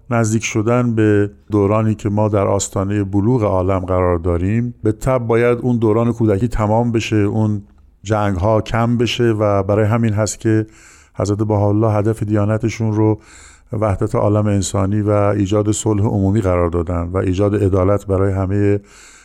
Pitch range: 100-115 Hz